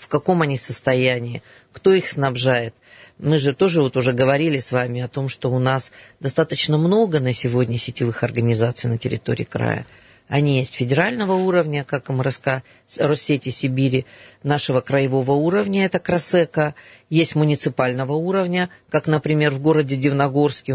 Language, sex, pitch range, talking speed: Russian, female, 130-160 Hz, 145 wpm